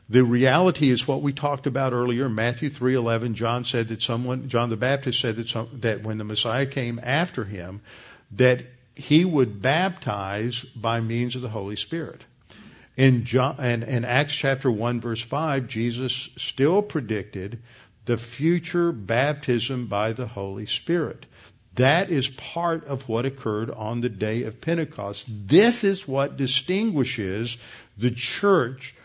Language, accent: English, American